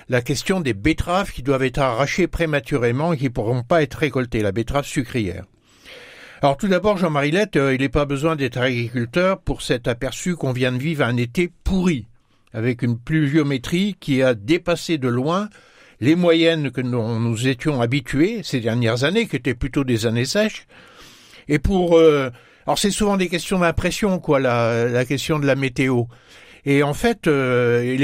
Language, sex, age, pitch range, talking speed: French, male, 60-79, 130-175 Hz, 180 wpm